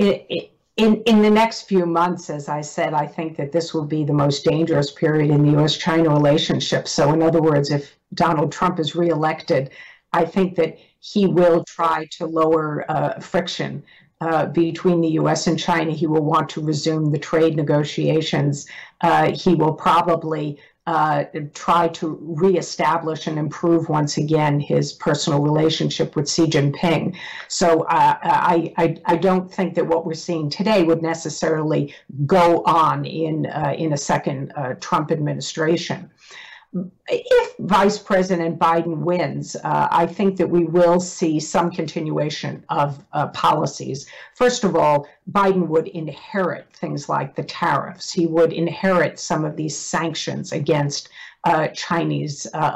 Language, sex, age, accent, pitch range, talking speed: English, female, 50-69, American, 155-175 Hz, 155 wpm